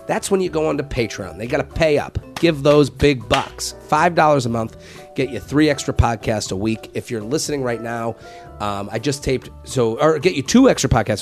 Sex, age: male, 30-49